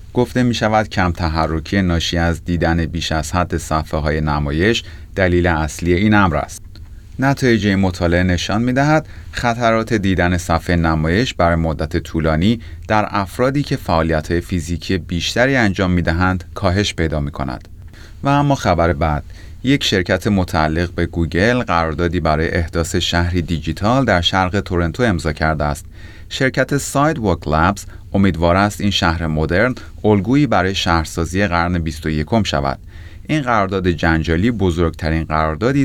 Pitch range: 80-105 Hz